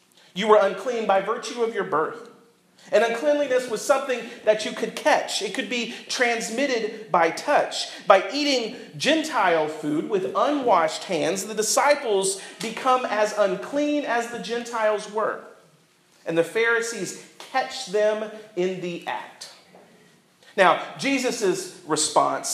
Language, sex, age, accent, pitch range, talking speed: English, male, 40-59, American, 185-240 Hz, 130 wpm